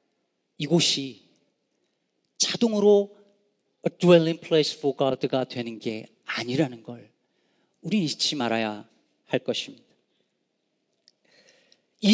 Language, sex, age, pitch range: Korean, male, 40-59, 160-215 Hz